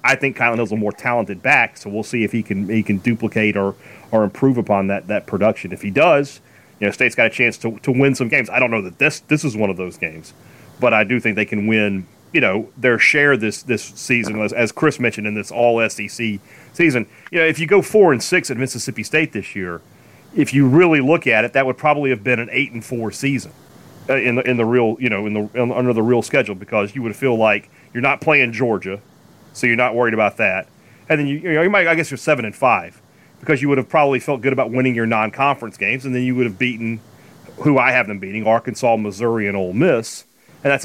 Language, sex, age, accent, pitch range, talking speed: English, male, 30-49, American, 110-135 Hz, 255 wpm